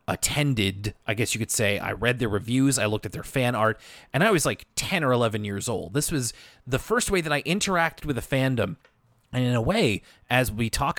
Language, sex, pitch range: English, male, 110-150 Hz